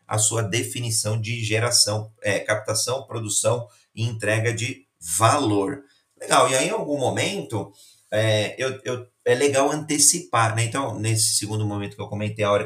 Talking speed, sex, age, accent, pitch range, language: 160 wpm, male, 30-49, Brazilian, 105-140 Hz, Portuguese